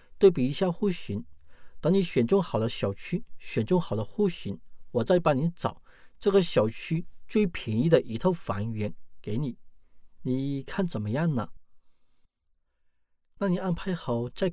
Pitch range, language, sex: 110-170 Hz, Chinese, male